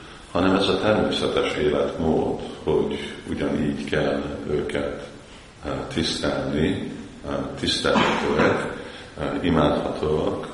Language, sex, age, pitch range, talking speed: Hungarian, male, 50-69, 70-80 Hz, 70 wpm